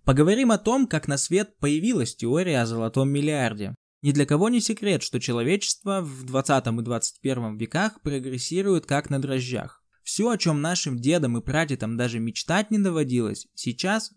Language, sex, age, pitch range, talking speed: Russian, male, 20-39, 125-190 Hz, 165 wpm